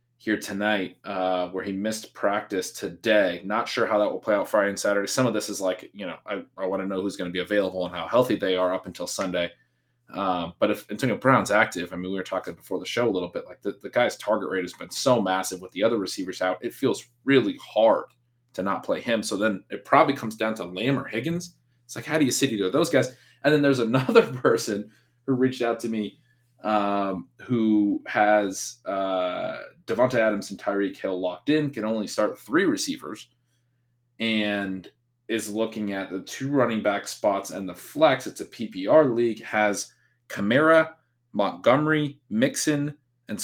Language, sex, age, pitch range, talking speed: English, male, 20-39, 100-125 Hz, 210 wpm